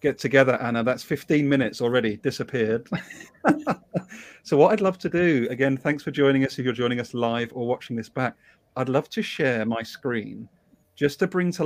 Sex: male